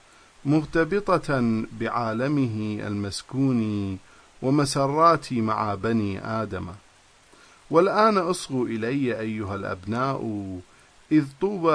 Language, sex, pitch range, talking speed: English, male, 105-120 Hz, 70 wpm